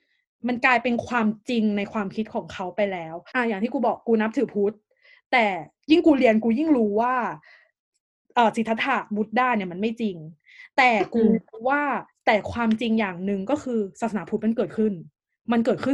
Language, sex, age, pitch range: Thai, female, 20-39, 205-245 Hz